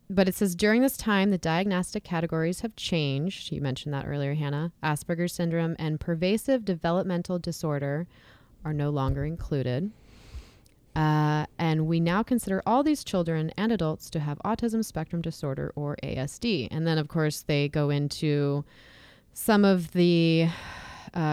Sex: female